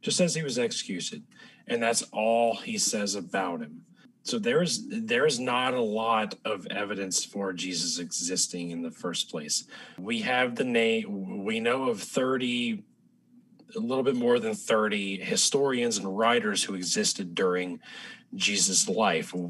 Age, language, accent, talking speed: 30-49, English, American, 155 wpm